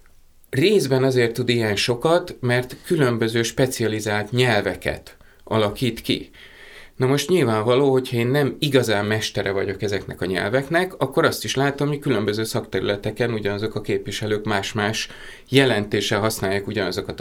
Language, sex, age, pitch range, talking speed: Hungarian, male, 30-49, 100-130 Hz, 130 wpm